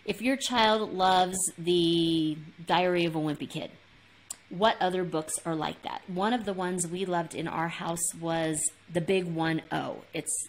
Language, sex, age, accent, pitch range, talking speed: English, female, 30-49, American, 170-220 Hz, 175 wpm